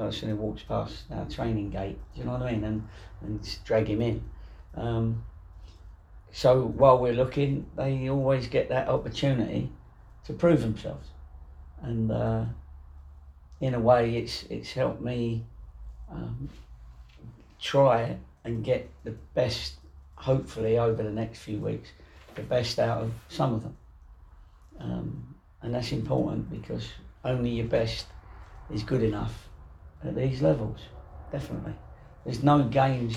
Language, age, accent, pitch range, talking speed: English, 40-59, British, 80-120 Hz, 140 wpm